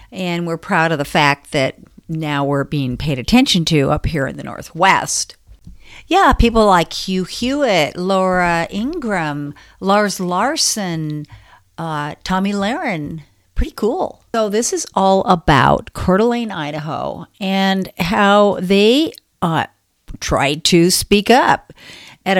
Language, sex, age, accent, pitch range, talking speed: English, female, 50-69, American, 155-225 Hz, 125 wpm